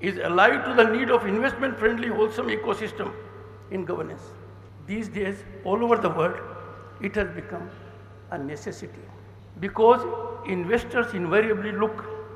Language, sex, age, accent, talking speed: Bengali, male, 60-79, native, 125 wpm